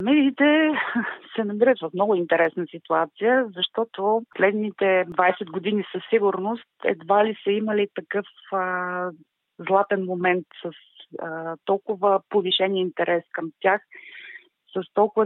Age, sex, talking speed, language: 30-49, female, 120 wpm, Bulgarian